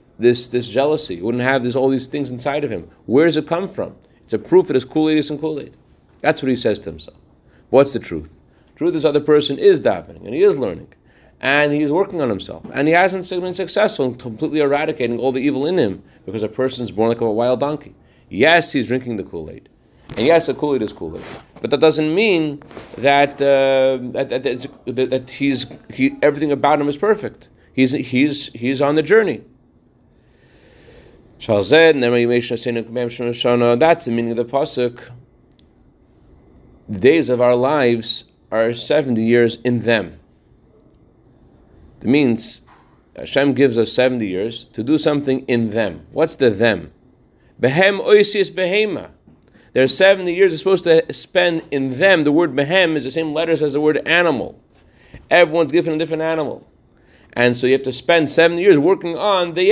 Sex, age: male, 30-49